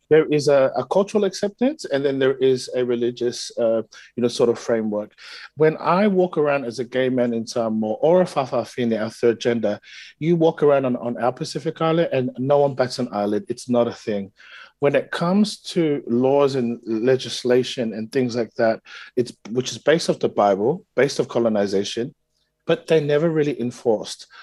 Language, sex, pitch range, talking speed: English, male, 120-150 Hz, 190 wpm